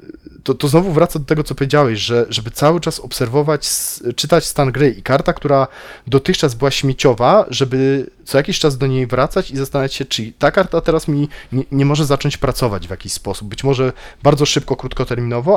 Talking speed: 195 wpm